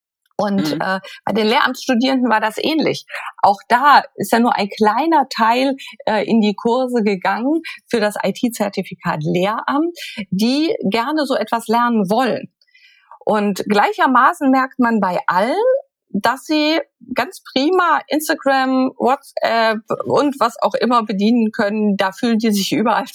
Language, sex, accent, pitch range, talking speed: German, female, German, 195-270 Hz, 140 wpm